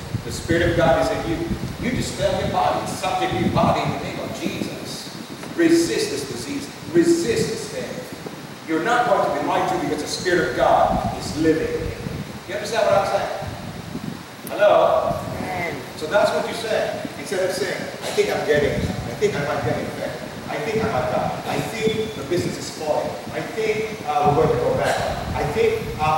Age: 40-59